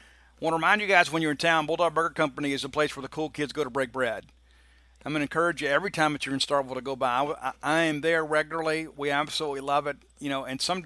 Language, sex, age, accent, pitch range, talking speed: English, male, 50-69, American, 130-155 Hz, 280 wpm